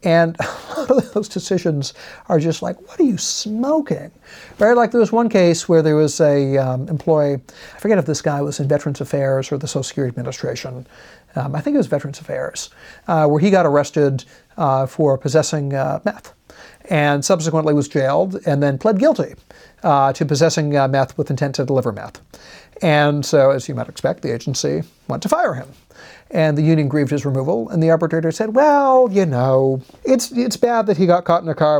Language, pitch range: English, 135-175 Hz